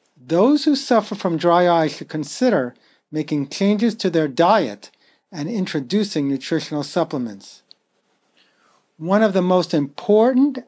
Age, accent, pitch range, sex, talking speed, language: 50-69, American, 145-205 Hz, male, 125 wpm, English